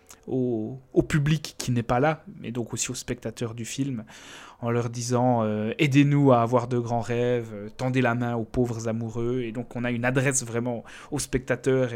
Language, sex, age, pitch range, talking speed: French, male, 20-39, 115-130 Hz, 200 wpm